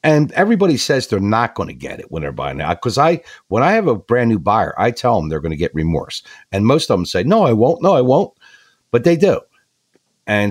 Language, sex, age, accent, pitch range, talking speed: English, male, 60-79, American, 100-145 Hz, 250 wpm